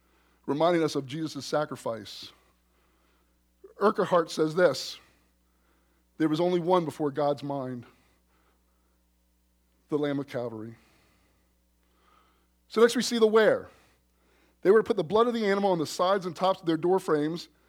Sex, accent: male, American